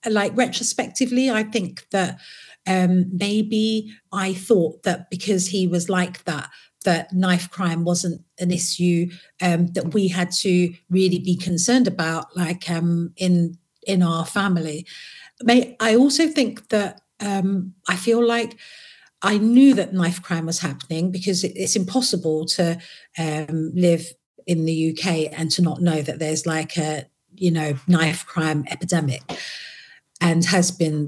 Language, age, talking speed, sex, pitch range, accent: English, 40-59, 150 wpm, female, 175-215 Hz, British